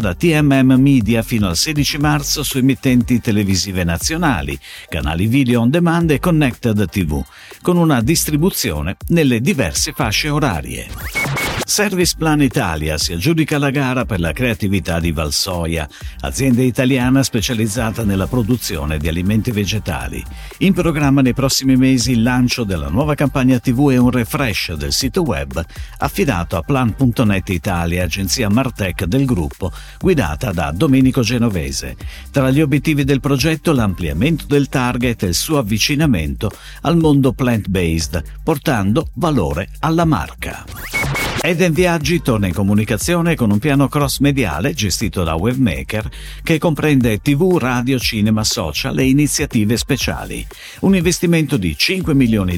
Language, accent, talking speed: Italian, native, 140 wpm